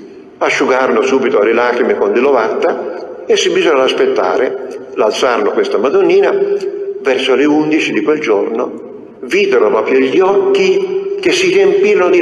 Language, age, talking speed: Italian, 50-69, 135 wpm